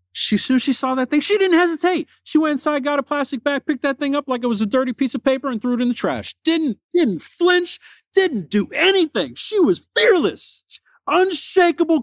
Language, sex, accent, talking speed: English, male, American, 220 wpm